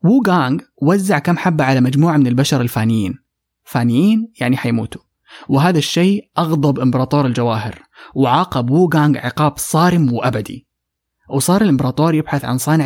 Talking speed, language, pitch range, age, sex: 125 wpm, English, 125-165 Hz, 20-39, male